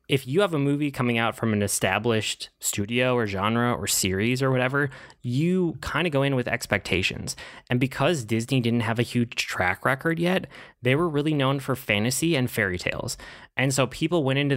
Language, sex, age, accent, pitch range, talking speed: English, male, 20-39, American, 105-135 Hz, 200 wpm